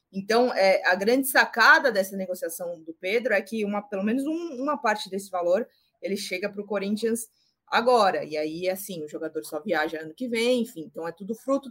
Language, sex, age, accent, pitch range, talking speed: Portuguese, female, 20-39, Brazilian, 175-230 Hz, 205 wpm